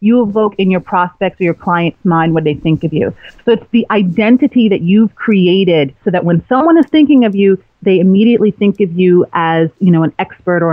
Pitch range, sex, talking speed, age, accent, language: 175-225 Hz, female, 225 wpm, 30-49, American, English